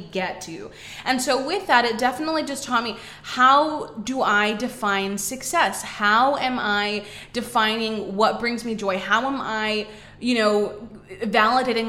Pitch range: 205-255 Hz